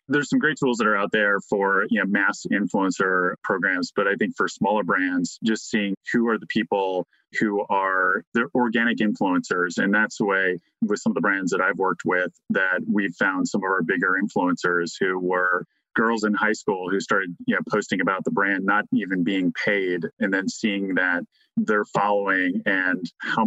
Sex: male